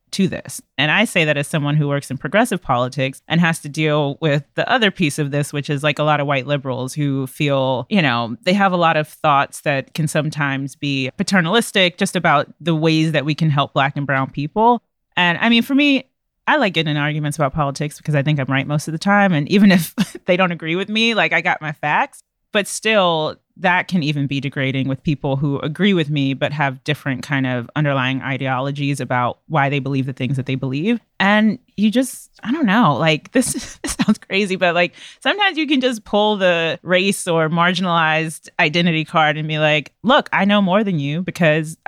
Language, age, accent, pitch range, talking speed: English, 30-49, American, 140-185 Hz, 220 wpm